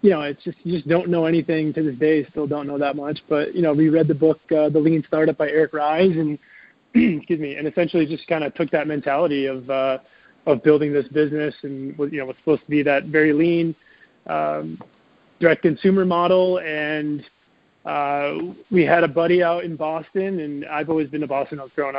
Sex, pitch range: male, 140-165 Hz